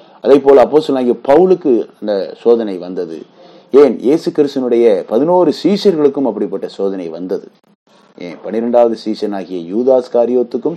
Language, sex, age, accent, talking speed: Tamil, male, 30-49, native, 115 wpm